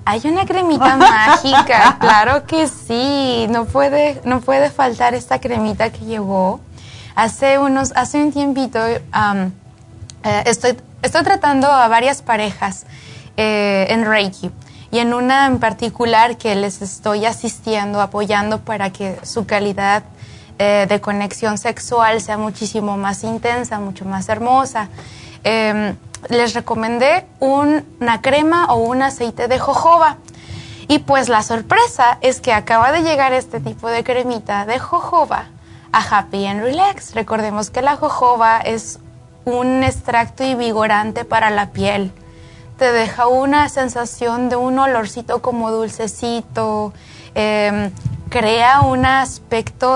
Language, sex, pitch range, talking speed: Spanish, female, 210-255 Hz, 135 wpm